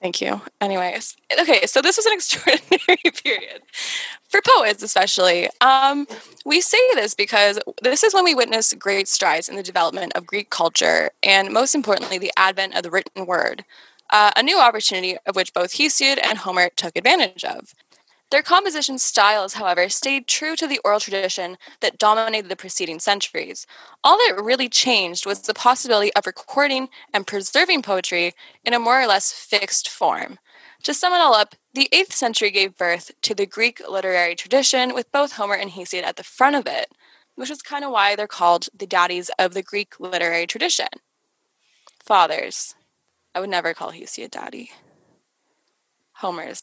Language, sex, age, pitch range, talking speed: English, female, 10-29, 190-285 Hz, 170 wpm